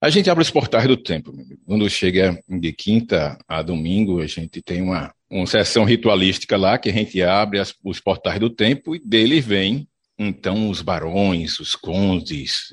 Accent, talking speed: Brazilian, 180 wpm